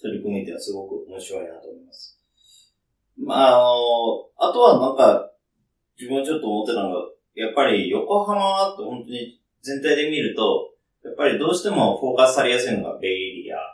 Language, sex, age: Japanese, male, 30-49